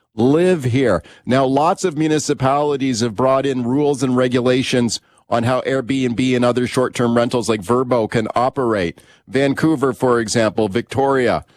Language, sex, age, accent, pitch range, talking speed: English, male, 40-59, American, 125-150 Hz, 140 wpm